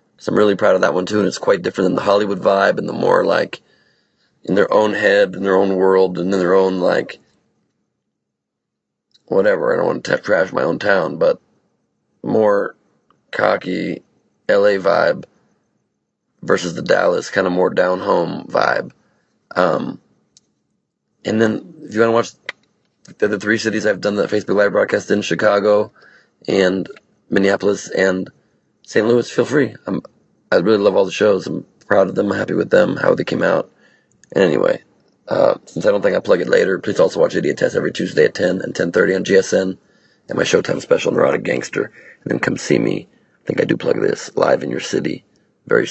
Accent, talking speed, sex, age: American, 190 wpm, male, 30-49